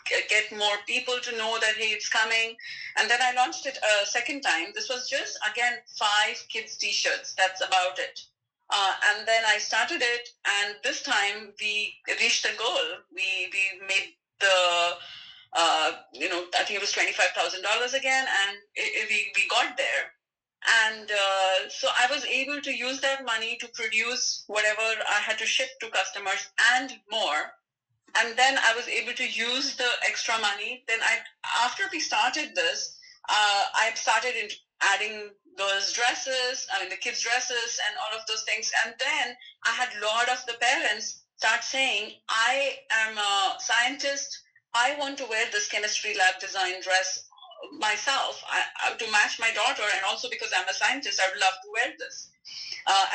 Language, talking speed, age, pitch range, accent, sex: English, 175 wpm, 30-49, 205-260 Hz, Indian, female